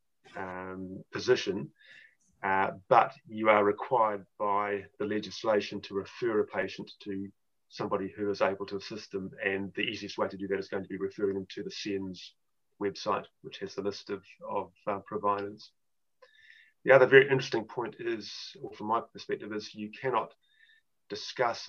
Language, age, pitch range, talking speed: English, 30-49, 100-130 Hz, 170 wpm